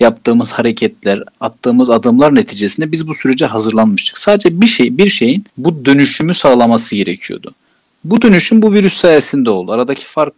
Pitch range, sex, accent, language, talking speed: 120-185 Hz, male, Turkish, English, 150 wpm